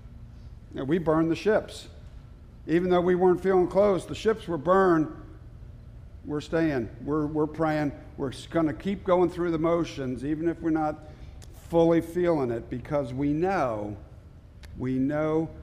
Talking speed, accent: 145 wpm, American